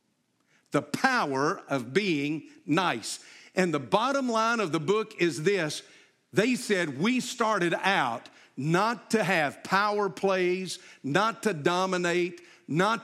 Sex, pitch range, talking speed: male, 155-210 Hz, 130 wpm